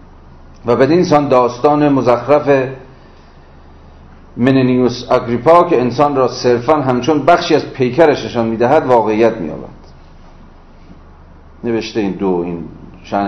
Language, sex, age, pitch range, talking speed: Persian, male, 40-59, 85-140 Hz, 105 wpm